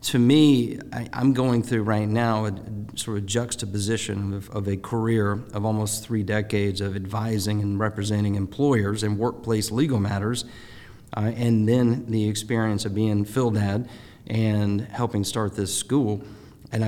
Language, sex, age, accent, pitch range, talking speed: English, male, 40-59, American, 105-120 Hz, 155 wpm